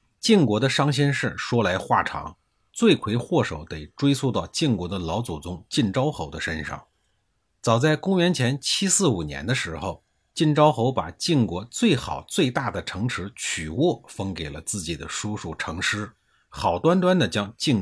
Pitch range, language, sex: 90-135 Hz, Chinese, male